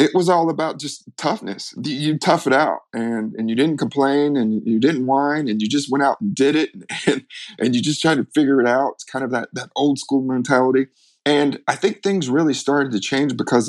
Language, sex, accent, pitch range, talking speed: English, male, American, 120-145 Hz, 230 wpm